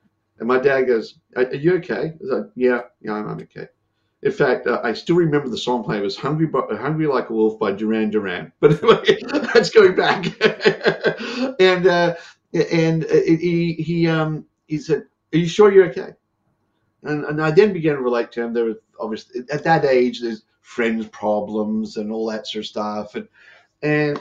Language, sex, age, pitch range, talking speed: English, male, 50-69, 110-170 Hz, 190 wpm